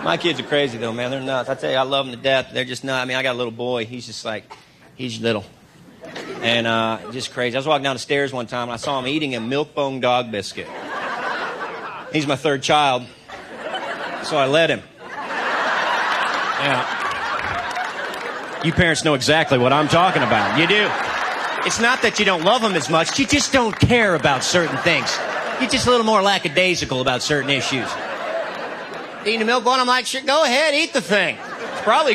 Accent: American